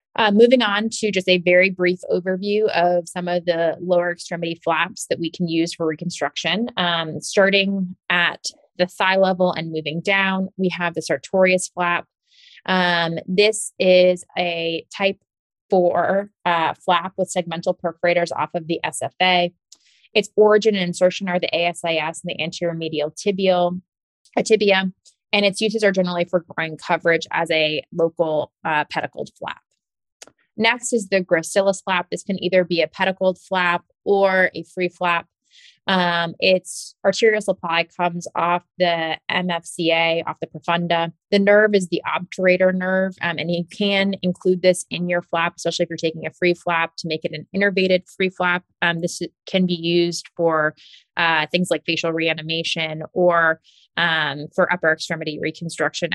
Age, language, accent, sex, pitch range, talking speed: 20-39, English, American, female, 165-190 Hz, 160 wpm